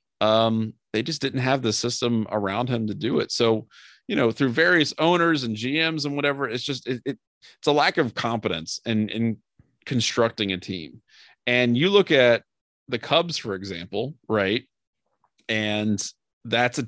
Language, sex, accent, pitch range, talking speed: English, male, American, 100-135 Hz, 170 wpm